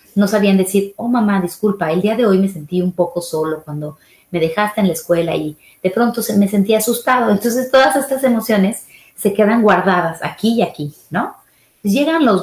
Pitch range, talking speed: 175-225 Hz, 200 wpm